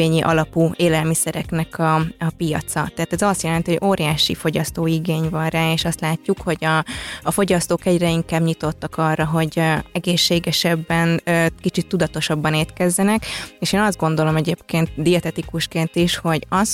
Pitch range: 160-175 Hz